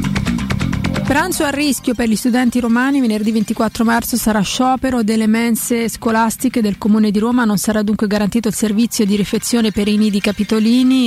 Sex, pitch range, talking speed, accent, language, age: female, 210-245 Hz, 170 wpm, native, Italian, 30-49